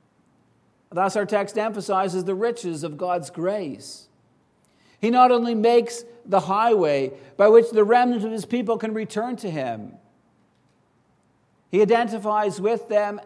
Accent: American